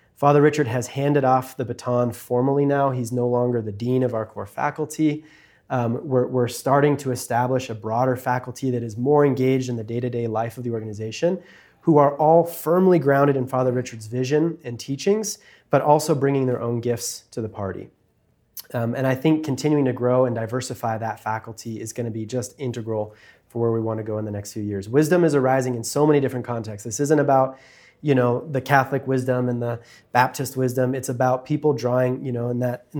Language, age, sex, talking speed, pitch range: English, 20-39, male, 210 wpm, 120-140 Hz